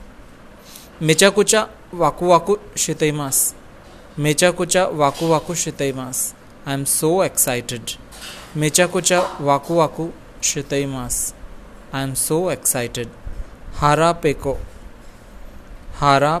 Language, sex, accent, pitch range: Japanese, male, Indian, 135-165 Hz